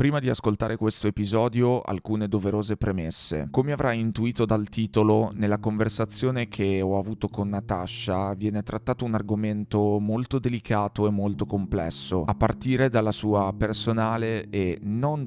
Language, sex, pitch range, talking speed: Italian, male, 100-115 Hz, 140 wpm